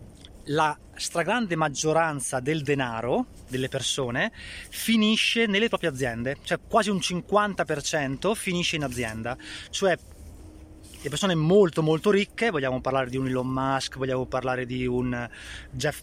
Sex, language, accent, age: male, Italian, native, 20-39